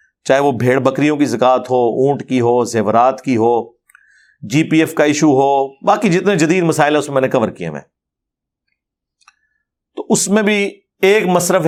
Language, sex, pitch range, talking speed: Urdu, male, 125-175 Hz, 190 wpm